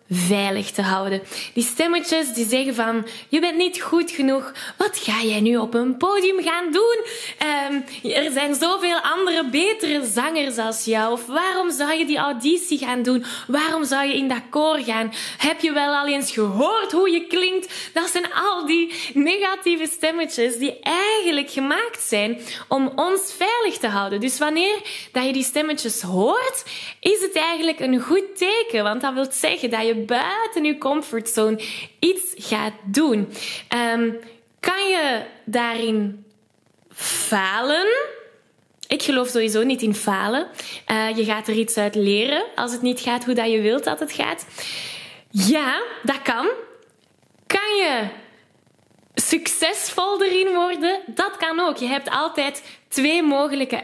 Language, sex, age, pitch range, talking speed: Dutch, female, 10-29, 230-340 Hz, 155 wpm